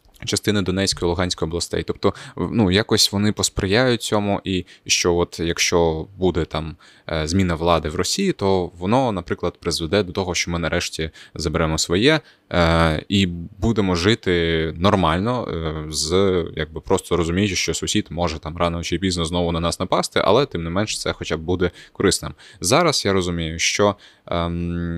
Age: 20-39